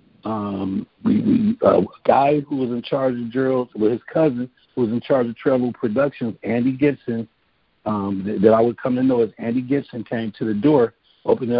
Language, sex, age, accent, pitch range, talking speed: English, male, 50-69, American, 120-155 Hz, 215 wpm